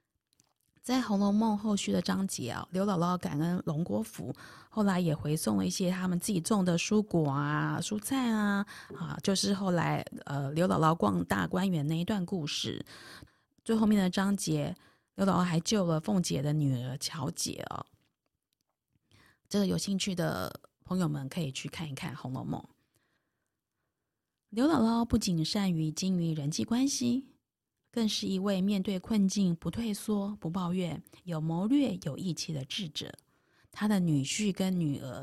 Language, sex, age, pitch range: Chinese, female, 20-39, 155-200 Hz